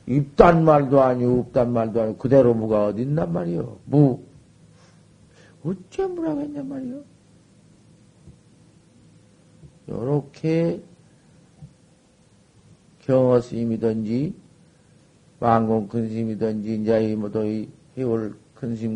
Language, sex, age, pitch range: Korean, male, 50-69, 120-170 Hz